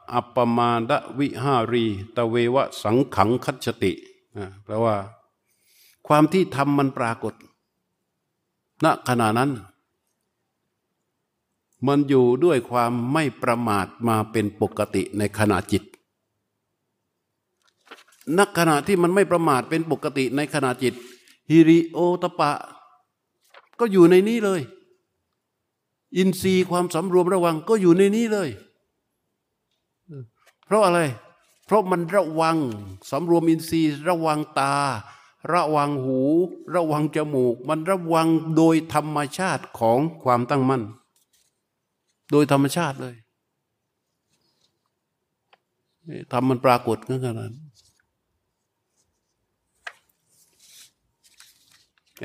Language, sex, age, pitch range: Thai, male, 60-79, 115-160 Hz